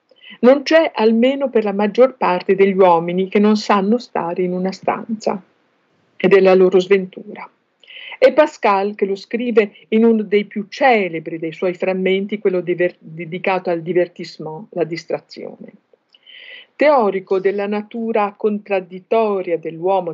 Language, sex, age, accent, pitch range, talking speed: Italian, female, 50-69, native, 180-230 Hz, 135 wpm